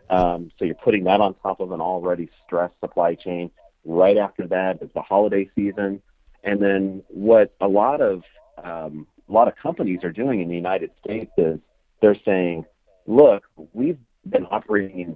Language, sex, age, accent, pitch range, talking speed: English, male, 40-59, American, 85-105 Hz, 175 wpm